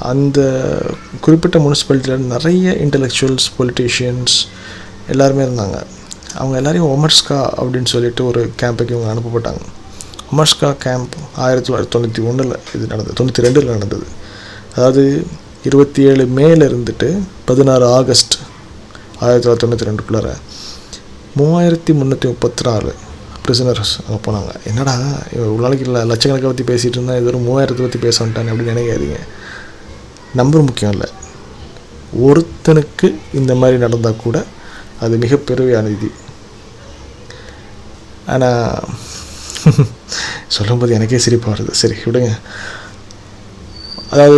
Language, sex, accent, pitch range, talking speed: Tamil, male, native, 110-135 Hz, 105 wpm